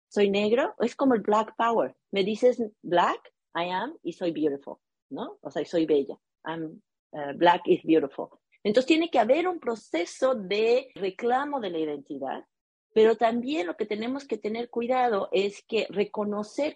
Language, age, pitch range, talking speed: English, 40-59, 190-255 Hz, 170 wpm